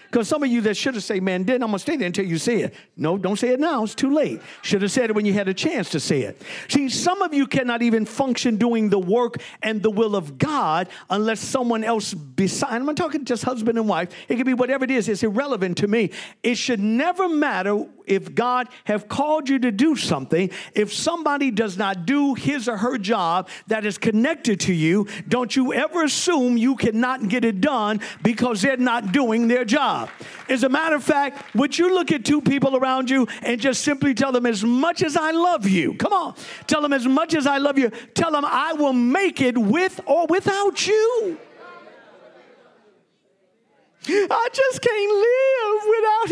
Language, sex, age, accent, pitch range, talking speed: English, male, 50-69, American, 225-330 Hz, 215 wpm